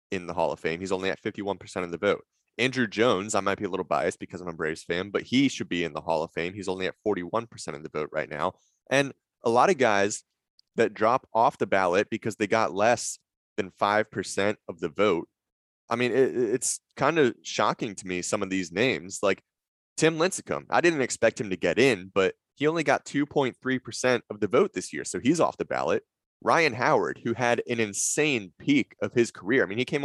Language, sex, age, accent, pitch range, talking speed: English, male, 20-39, American, 95-120 Hz, 225 wpm